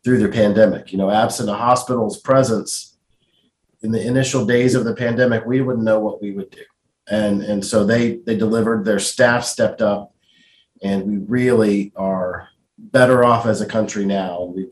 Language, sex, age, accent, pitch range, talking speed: English, male, 40-59, American, 100-125 Hz, 180 wpm